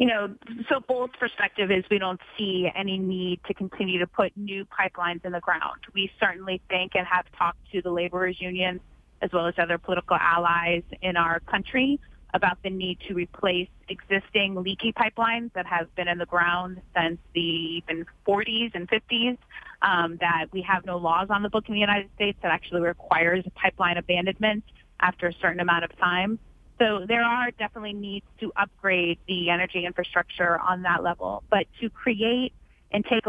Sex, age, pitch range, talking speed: female, 30-49, 175-200 Hz, 185 wpm